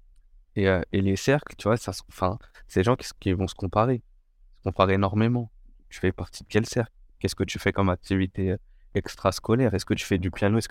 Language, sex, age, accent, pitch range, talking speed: French, male, 20-39, French, 95-110 Hz, 235 wpm